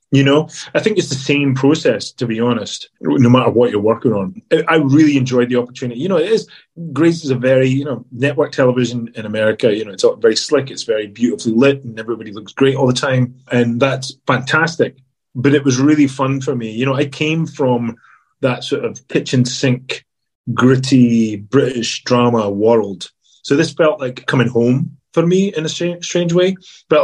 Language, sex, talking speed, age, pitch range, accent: English, male, 200 wpm, 30-49, 115-140 Hz, British